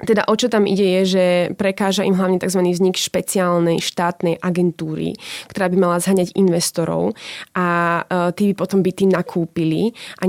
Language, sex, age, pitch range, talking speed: Slovak, female, 20-39, 175-190 Hz, 165 wpm